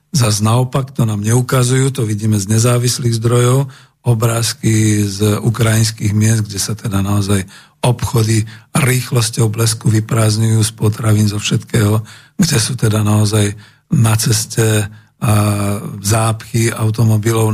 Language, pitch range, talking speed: Slovak, 110-135 Hz, 115 wpm